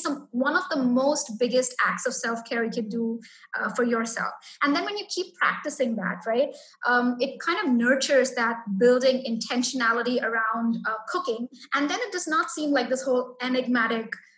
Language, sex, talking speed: English, female, 185 wpm